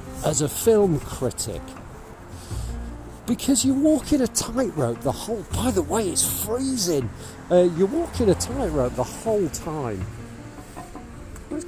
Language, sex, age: English, male, 50-69